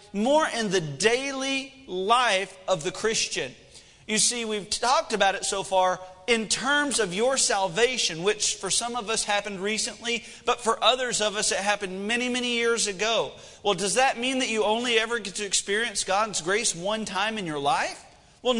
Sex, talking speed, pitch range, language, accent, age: male, 185 wpm, 185-240 Hz, English, American, 40-59